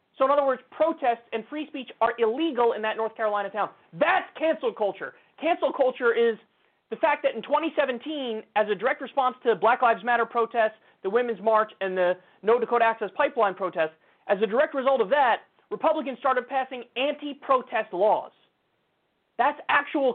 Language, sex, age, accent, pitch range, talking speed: English, male, 30-49, American, 180-250 Hz, 175 wpm